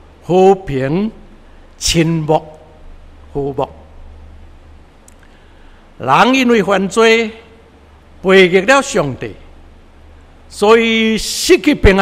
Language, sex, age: Chinese, male, 60-79